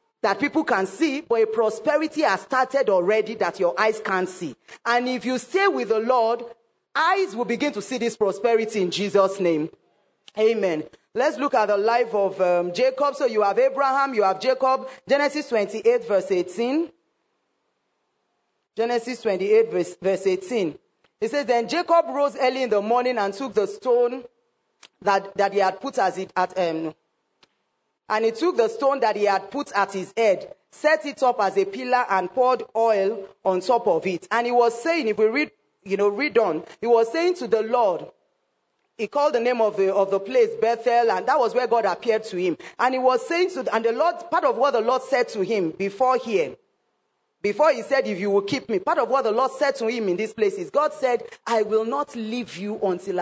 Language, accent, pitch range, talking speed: English, Nigerian, 195-265 Hz, 205 wpm